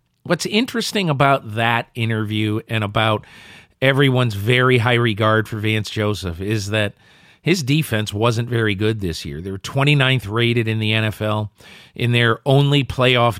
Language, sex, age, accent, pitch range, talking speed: English, male, 40-59, American, 105-125 Hz, 150 wpm